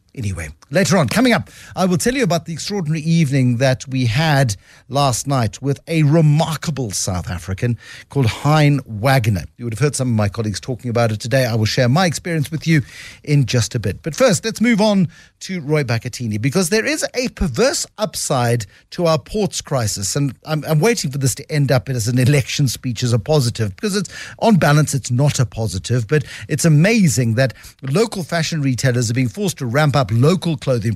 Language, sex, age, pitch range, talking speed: English, male, 50-69, 125-165 Hz, 205 wpm